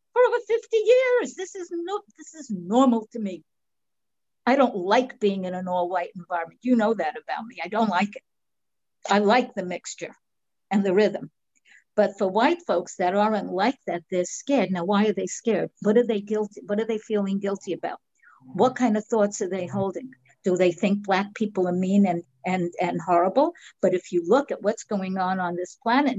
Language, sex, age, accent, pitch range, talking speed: English, female, 60-79, American, 185-245 Hz, 205 wpm